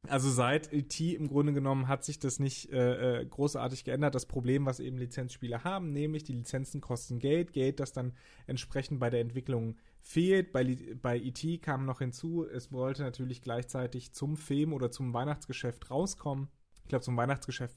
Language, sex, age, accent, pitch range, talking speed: German, male, 30-49, German, 125-140 Hz, 175 wpm